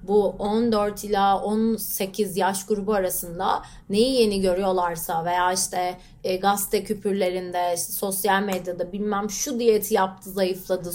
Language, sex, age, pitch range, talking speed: Turkish, female, 30-49, 190-250 Hz, 115 wpm